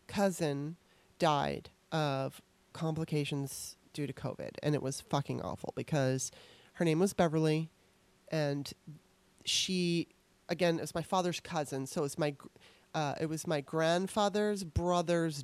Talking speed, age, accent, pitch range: 125 wpm, 30-49, American, 150-175 Hz